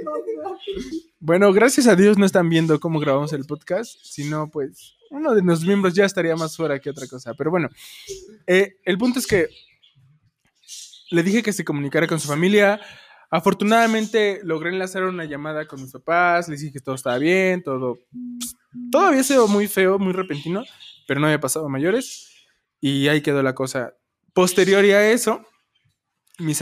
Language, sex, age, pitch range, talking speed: Spanish, male, 20-39, 150-200 Hz, 170 wpm